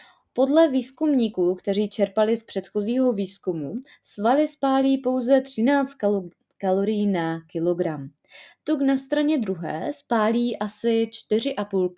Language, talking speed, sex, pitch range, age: Czech, 105 wpm, female, 175-255 Hz, 20-39